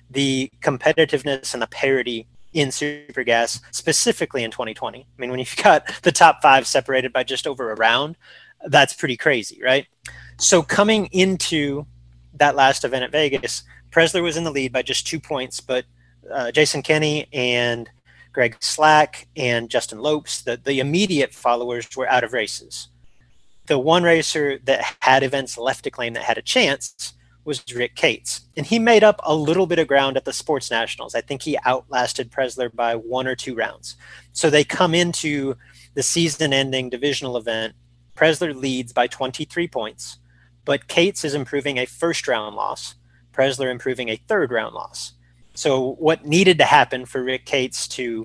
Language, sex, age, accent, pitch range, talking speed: English, male, 30-49, American, 120-155 Hz, 170 wpm